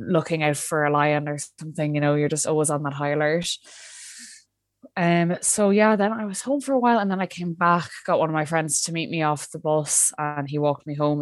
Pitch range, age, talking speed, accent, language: 140-160 Hz, 20-39, 250 wpm, Irish, English